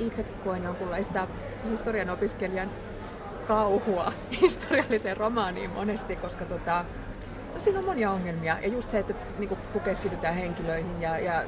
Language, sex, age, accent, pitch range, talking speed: Finnish, female, 30-49, native, 175-220 Hz, 135 wpm